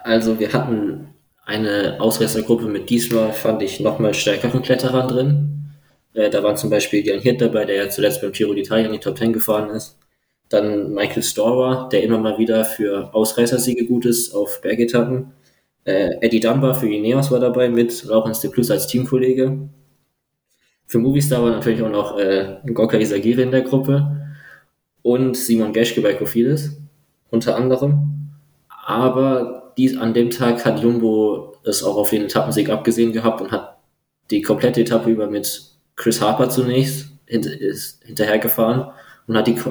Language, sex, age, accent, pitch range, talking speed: German, male, 20-39, German, 110-130 Hz, 165 wpm